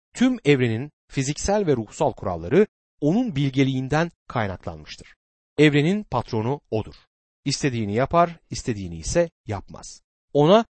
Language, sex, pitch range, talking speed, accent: Turkish, male, 105-165 Hz, 100 wpm, native